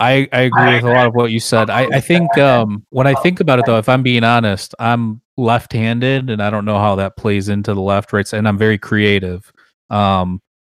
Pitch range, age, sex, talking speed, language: 100-120 Hz, 30-49, male, 235 wpm, English